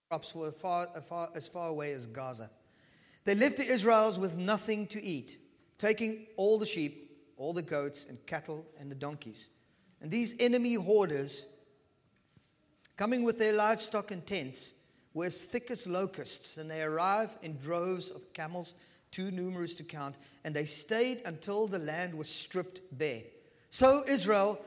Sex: male